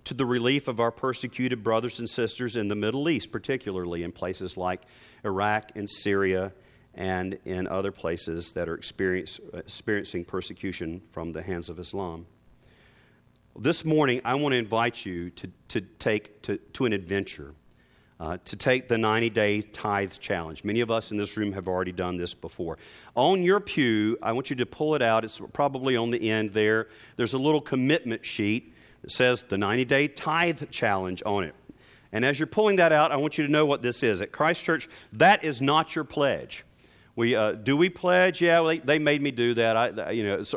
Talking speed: 195 wpm